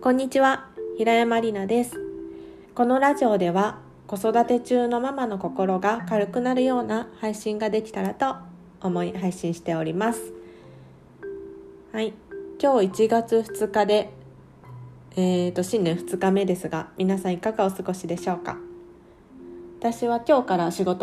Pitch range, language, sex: 140-215 Hz, Japanese, female